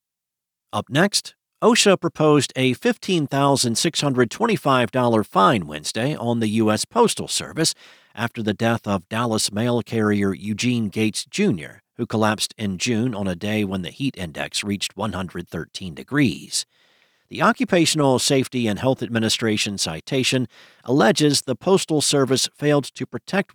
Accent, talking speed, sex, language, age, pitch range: American, 130 wpm, male, English, 50-69, 110-145 Hz